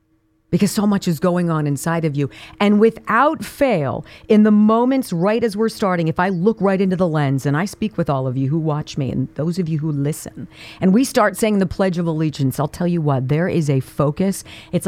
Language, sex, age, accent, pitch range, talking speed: English, female, 40-59, American, 140-215 Hz, 240 wpm